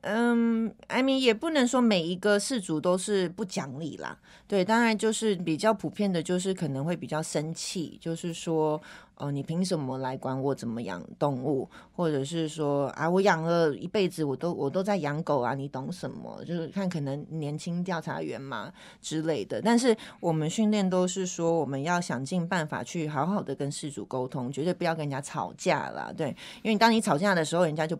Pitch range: 150-200 Hz